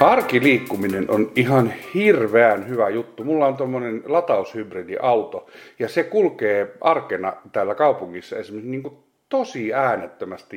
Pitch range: 115-150 Hz